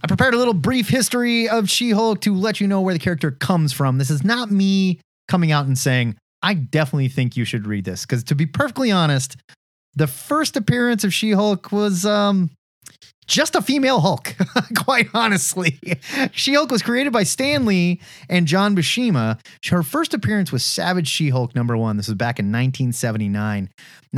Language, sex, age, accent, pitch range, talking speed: English, male, 30-49, American, 120-190 Hz, 180 wpm